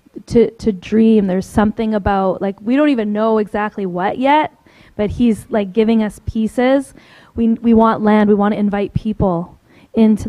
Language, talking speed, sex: English, 175 wpm, female